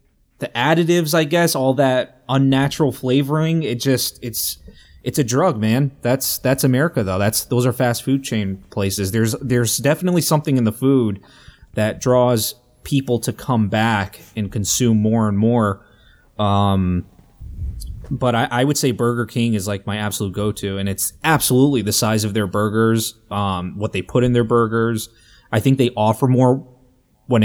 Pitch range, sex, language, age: 105-130 Hz, male, English, 20-39